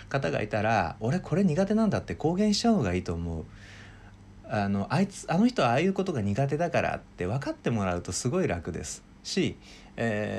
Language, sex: Japanese, male